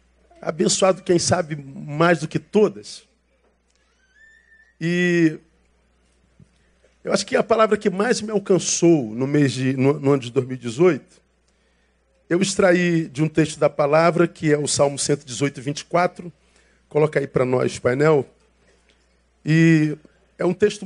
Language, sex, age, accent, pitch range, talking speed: Portuguese, male, 50-69, Brazilian, 140-195 Hz, 130 wpm